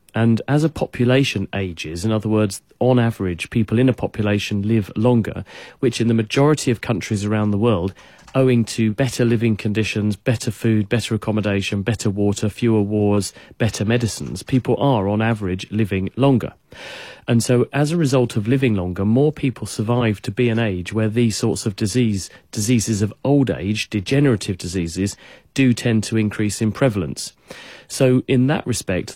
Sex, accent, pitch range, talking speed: male, British, 100-120 Hz, 170 wpm